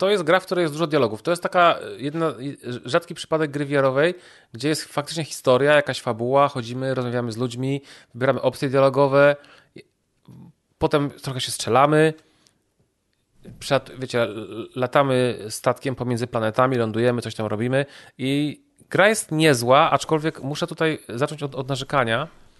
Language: Polish